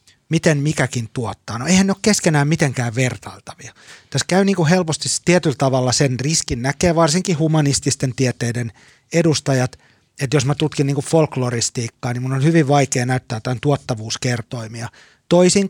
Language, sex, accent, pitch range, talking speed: Finnish, male, native, 125-155 Hz, 155 wpm